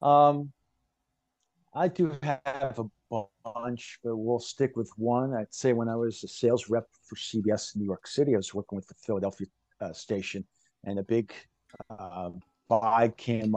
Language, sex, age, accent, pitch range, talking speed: English, male, 50-69, American, 105-125 Hz, 175 wpm